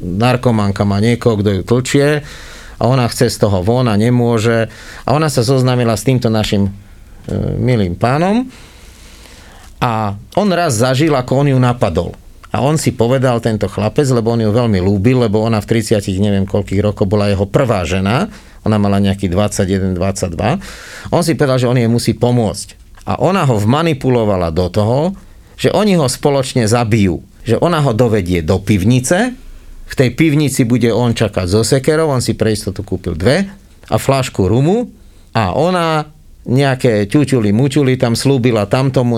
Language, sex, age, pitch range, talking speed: Slovak, male, 40-59, 105-135 Hz, 160 wpm